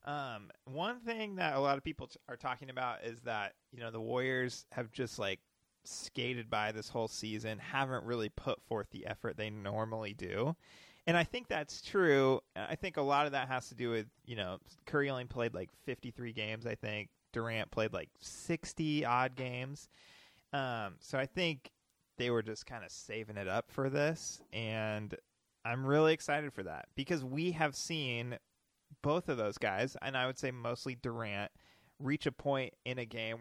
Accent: American